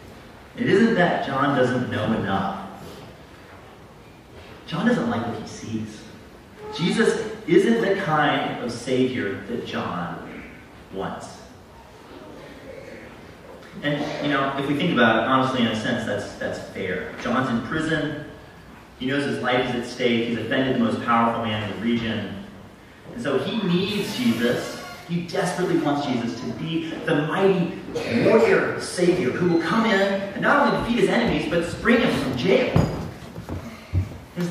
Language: English